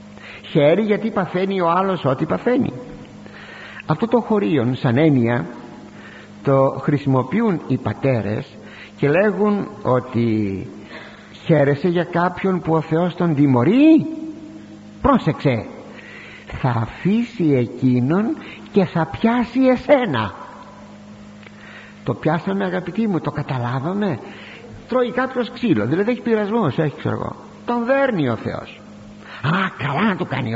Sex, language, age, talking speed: male, Greek, 60-79, 110 wpm